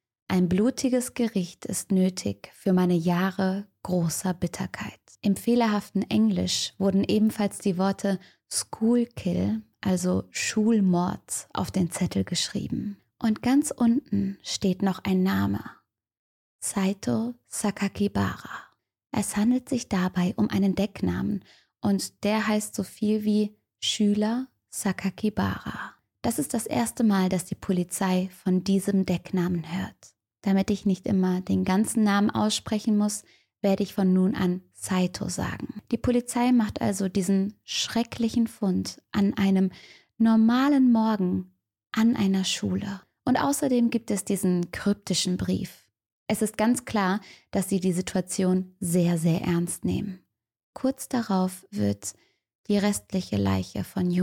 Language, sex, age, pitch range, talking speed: German, female, 20-39, 180-215 Hz, 130 wpm